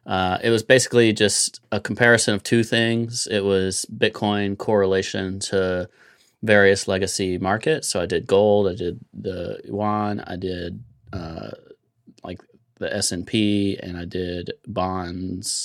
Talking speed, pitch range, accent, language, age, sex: 140 wpm, 90-105 Hz, American, English, 30-49, male